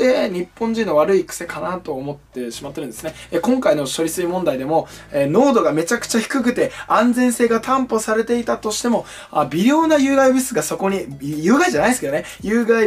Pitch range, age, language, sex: 155-235 Hz, 20-39, Japanese, male